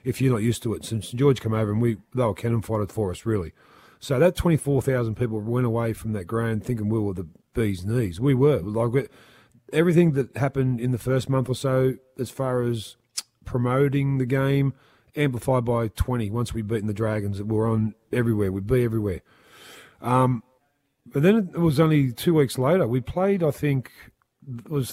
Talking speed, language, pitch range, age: 200 wpm, English, 115-135 Hz, 40-59